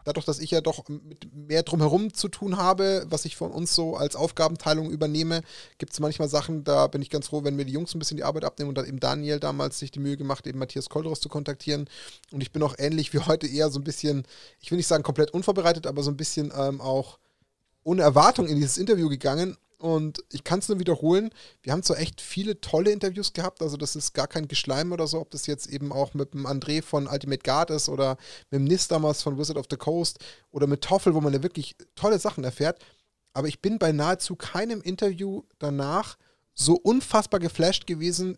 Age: 30-49